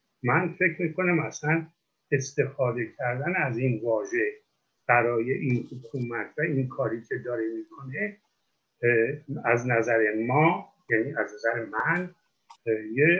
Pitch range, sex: 120-160 Hz, male